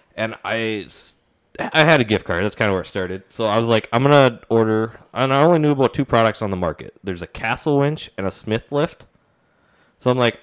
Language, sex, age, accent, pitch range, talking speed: English, male, 20-39, American, 95-120 Hz, 240 wpm